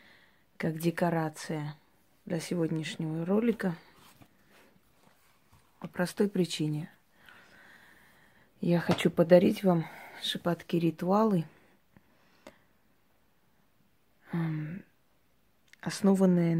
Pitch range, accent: 160-190 Hz, native